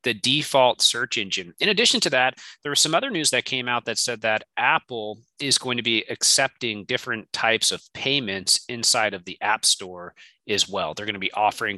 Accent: American